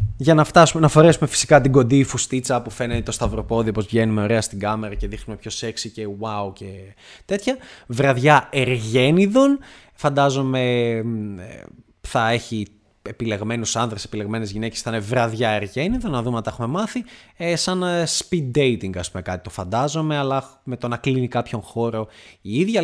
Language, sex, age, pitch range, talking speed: Greek, male, 20-39, 110-150 Hz, 165 wpm